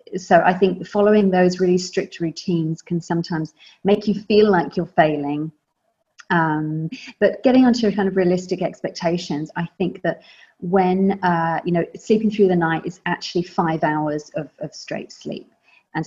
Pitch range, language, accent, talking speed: 170-200 Hz, English, British, 165 wpm